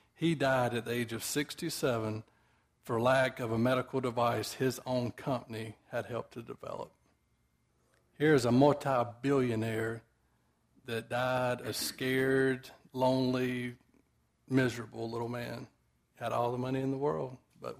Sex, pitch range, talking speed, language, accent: male, 115-130 Hz, 130 wpm, English, American